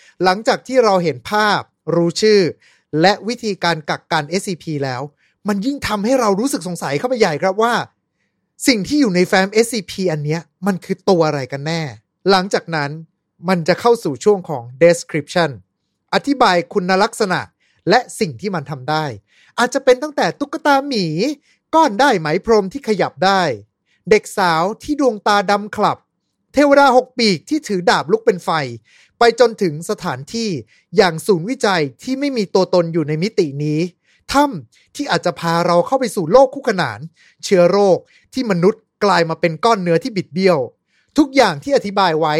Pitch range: 170-230 Hz